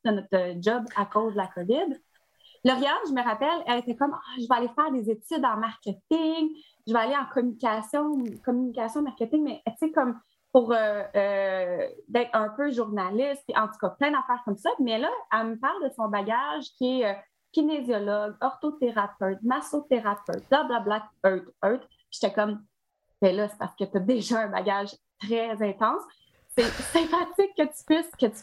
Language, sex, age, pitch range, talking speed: French, female, 30-49, 220-275 Hz, 190 wpm